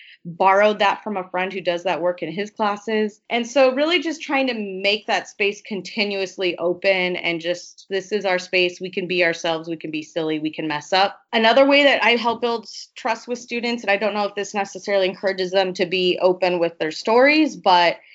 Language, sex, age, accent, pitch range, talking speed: English, female, 30-49, American, 175-215 Hz, 220 wpm